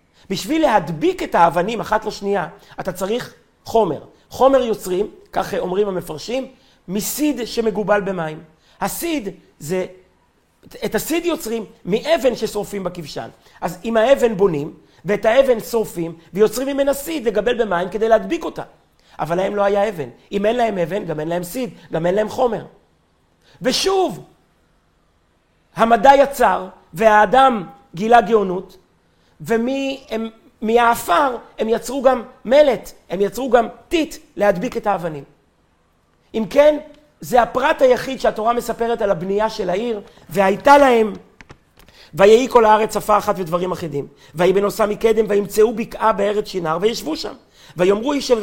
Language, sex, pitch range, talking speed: Hebrew, male, 180-245 Hz, 135 wpm